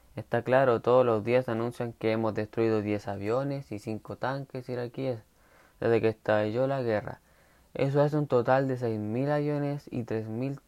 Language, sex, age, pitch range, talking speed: Spanish, male, 20-39, 110-140 Hz, 165 wpm